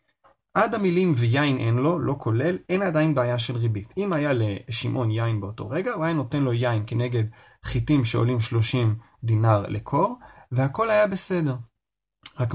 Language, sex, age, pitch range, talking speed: Hebrew, male, 30-49, 115-145 Hz, 160 wpm